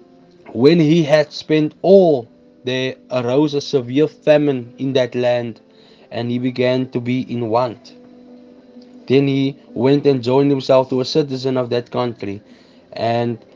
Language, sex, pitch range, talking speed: English, male, 120-145 Hz, 145 wpm